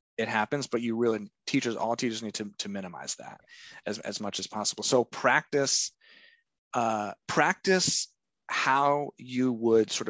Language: English